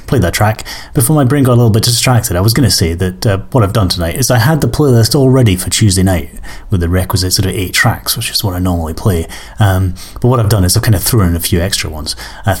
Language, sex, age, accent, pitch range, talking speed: English, male, 30-49, British, 95-130 Hz, 285 wpm